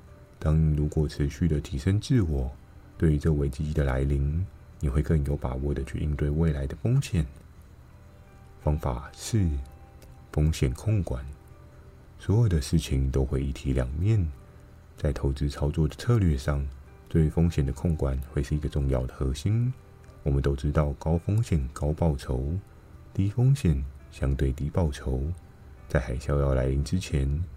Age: 20-39